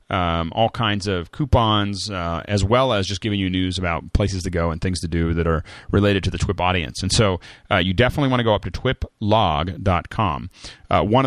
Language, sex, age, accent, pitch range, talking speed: English, male, 30-49, American, 90-110 Hz, 220 wpm